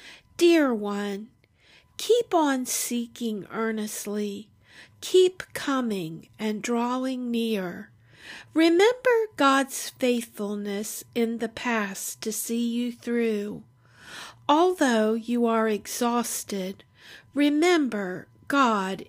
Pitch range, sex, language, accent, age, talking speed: 210-285 Hz, female, English, American, 50-69, 85 wpm